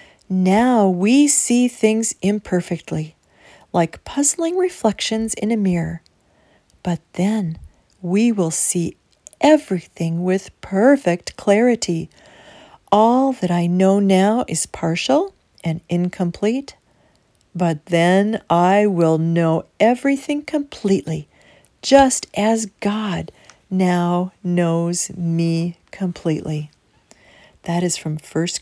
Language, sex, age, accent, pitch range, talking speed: English, female, 40-59, American, 165-220 Hz, 100 wpm